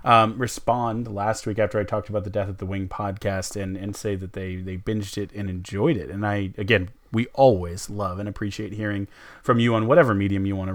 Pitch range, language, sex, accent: 95-110 Hz, English, male, American